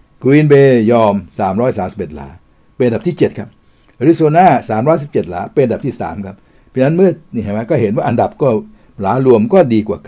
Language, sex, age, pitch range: Thai, male, 60-79, 95-125 Hz